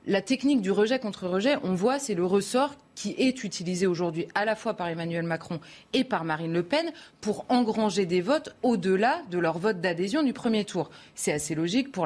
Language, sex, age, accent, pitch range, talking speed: French, female, 30-49, French, 170-220 Hz, 210 wpm